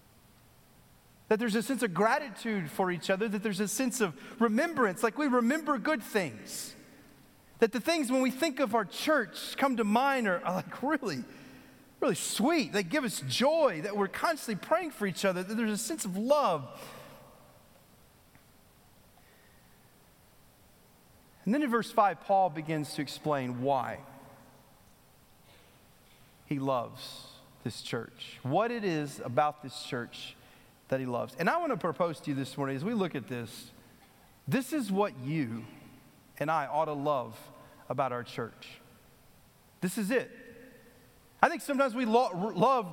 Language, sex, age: English, male, 40-59